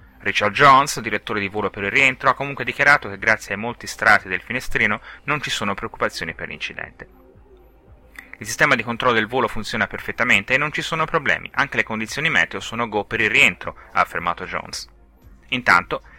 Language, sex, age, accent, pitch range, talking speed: Italian, male, 30-49, native, 105-140 Hz, 185 wpm